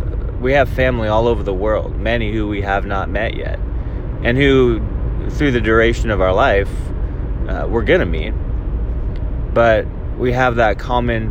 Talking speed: 165 wpm